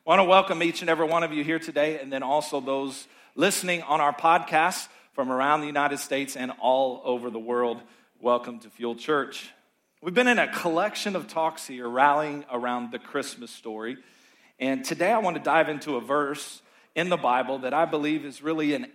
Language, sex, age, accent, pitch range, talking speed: English, male, 40-59, American, 130-175 Hz, 205 wpm